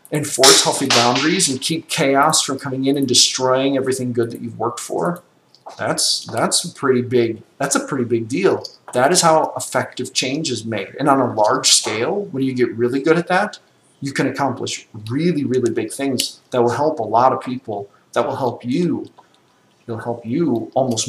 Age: 40-59